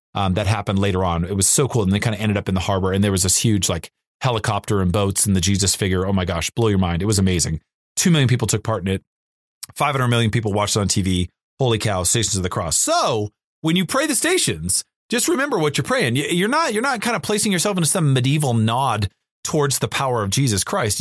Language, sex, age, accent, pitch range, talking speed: English, male, 30-49, American, 105-155 Hz, 255 wpm